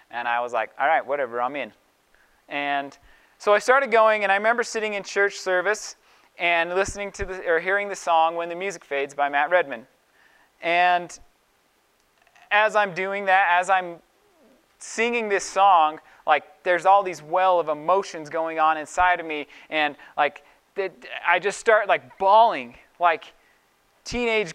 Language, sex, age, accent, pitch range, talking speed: English, male, 30-49, American, 165-210 Hz, 165 wpm